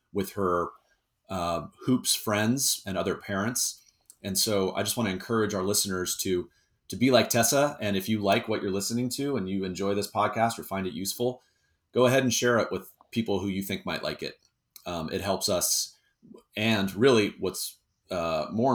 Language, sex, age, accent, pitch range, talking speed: English, male, 30-49, American, 95-110 Hz, 190 wpm